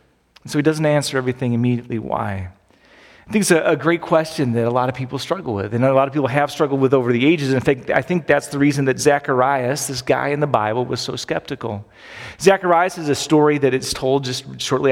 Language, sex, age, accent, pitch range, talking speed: English, male, 40-59, American, 130-165 Hz, 235 wpm